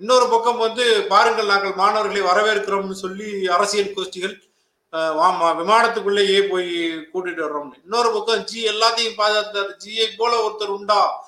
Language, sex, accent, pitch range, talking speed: Tamil, male, native, 185-245 Hz, 130 wpm